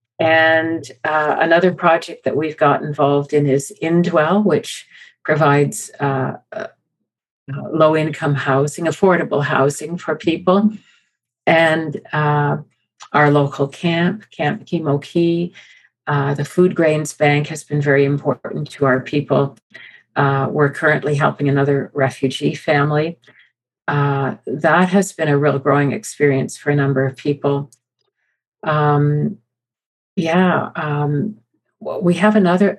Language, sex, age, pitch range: English, female, 50-69, 140-170 Hz